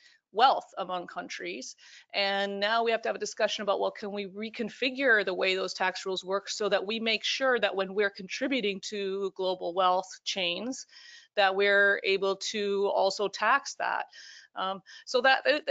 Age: 30-49